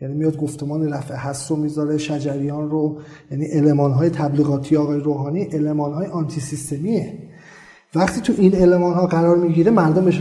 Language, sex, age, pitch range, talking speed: Persian, male, 40-59, 150-220 Hz, 155 wpm